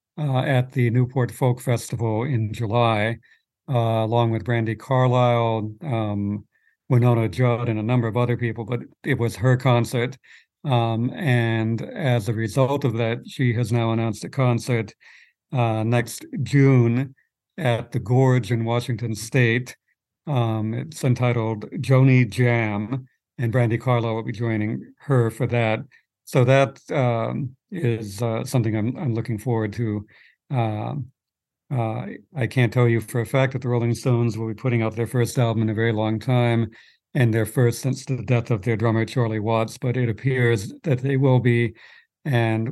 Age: 60-79